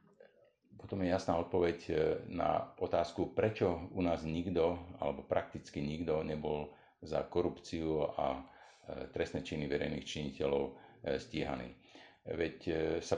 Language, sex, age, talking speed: Slovak, male, 50-69, 110 wpm